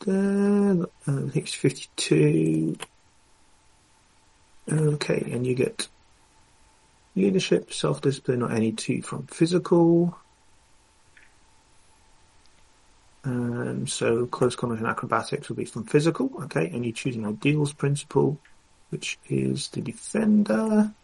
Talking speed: 110 wpm